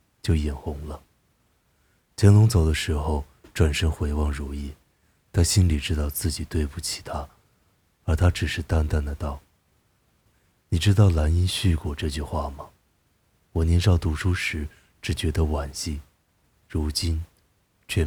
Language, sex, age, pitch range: Chinese, male, 30-49, 75-90 Hz